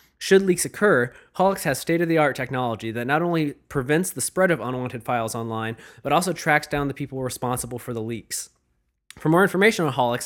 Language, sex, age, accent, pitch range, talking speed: English, male, 20-39, American, 125-155 Hz, 185 wpm